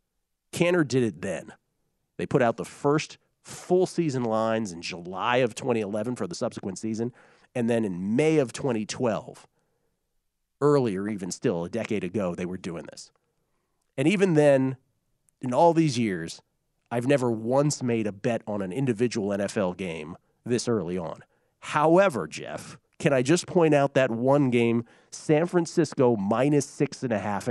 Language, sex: English, male